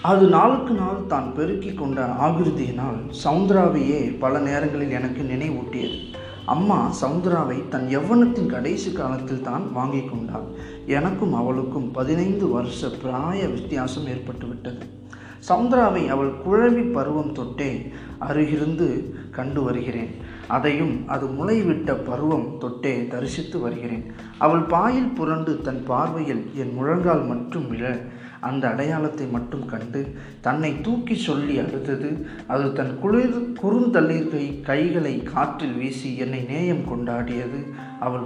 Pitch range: 130-165 Hz